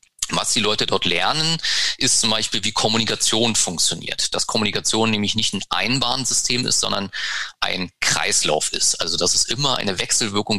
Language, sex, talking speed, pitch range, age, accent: German, male, 160 wpm, 95-115 Hz, 30-49, German